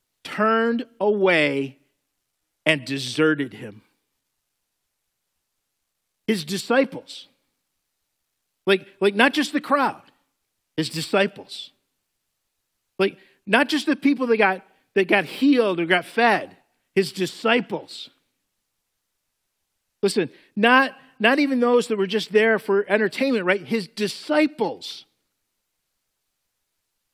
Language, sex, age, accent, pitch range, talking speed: English, male, 50-69, American, 165-220 Hz, 95 wpm